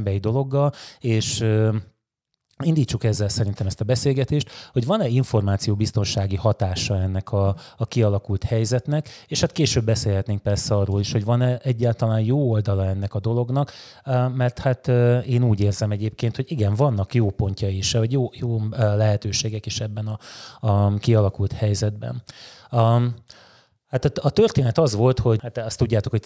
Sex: male